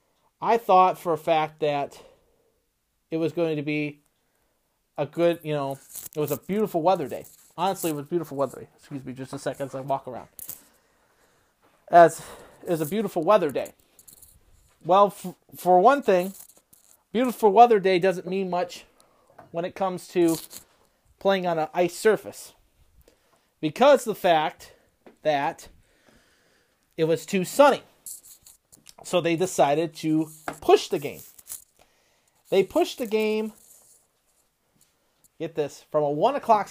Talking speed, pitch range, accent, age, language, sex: 140 wpm, 155-215 Hz, American, 30-49, English, male